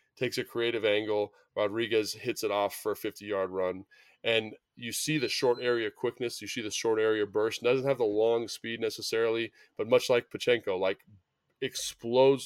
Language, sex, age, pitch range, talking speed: English, male, 20-39, 110-135 Hz, 185 wpm